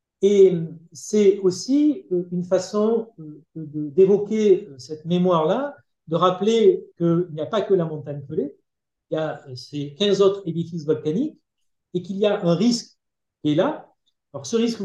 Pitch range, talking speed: 160-205 Hz, 155 wpm